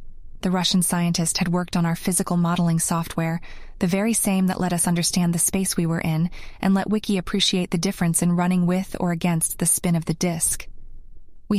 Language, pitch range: English, 170-200 Hz